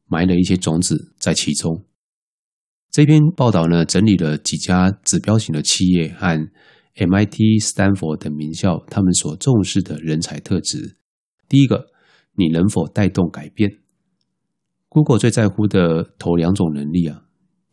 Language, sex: Chinese, male